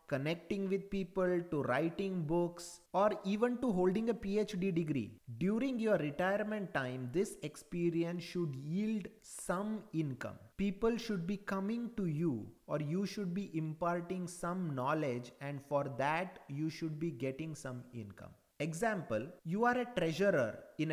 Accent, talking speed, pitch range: Indian, 145 wpm, 145-195 Hz